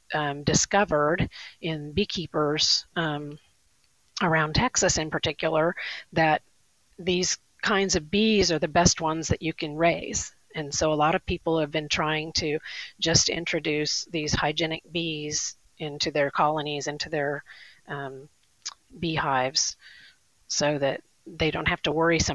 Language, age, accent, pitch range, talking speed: English, 40-59, American, 145-175 Hz, 140 wpm